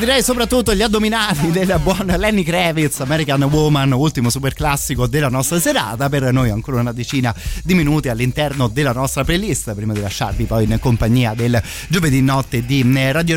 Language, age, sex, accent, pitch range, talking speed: Italian, 30-49, male, native, 115-145 Hz, 170 wpm